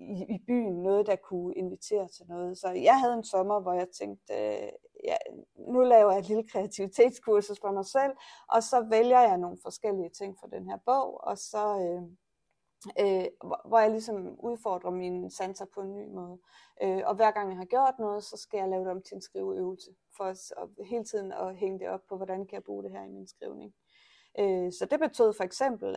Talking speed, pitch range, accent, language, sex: 215 wpm, 190-230 Hz, native, Danish, female